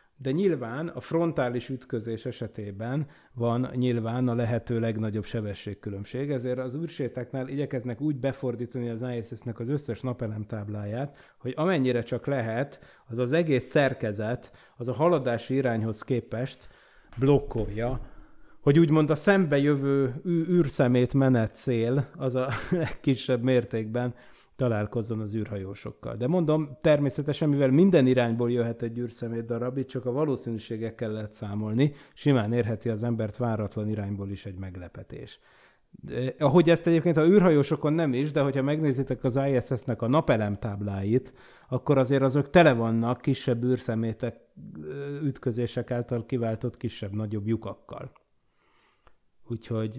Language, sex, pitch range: Hungarian, male, 115-140 Hz